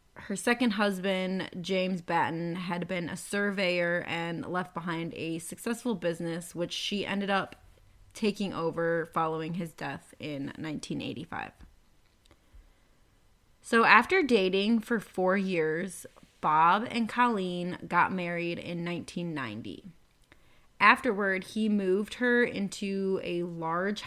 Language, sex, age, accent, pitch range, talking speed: English, female, 20-39, American, 170-210 Hz, 115 wpm